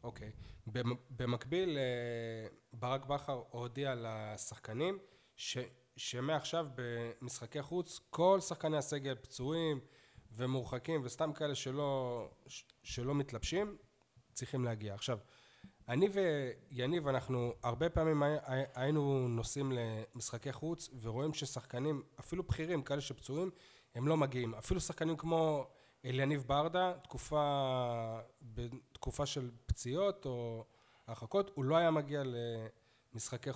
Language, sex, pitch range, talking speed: Hebrew, male, 120-150 Hz, 105 wpm